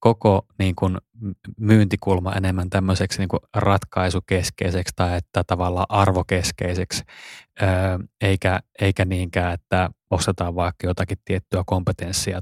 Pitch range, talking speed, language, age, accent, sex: 90-105 Hz, 100 wpm, Finnish, 20-39, native, male